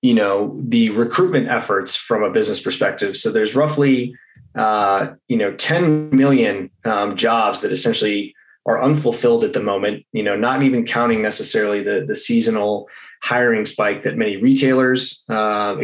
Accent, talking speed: American, 155 wpm